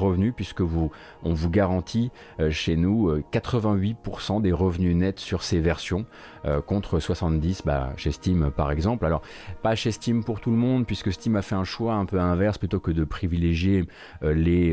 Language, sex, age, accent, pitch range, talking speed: French, male, 30-49, French, 80-105 Hz, 195 wpm